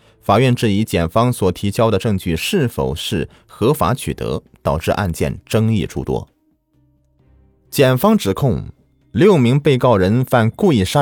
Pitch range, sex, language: 100-135 Hz, male, Chinese